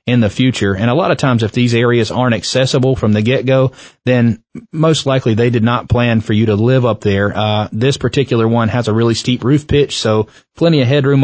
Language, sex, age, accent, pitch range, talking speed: English, male, 30-49, American, 110-130 Hz, 230 wpm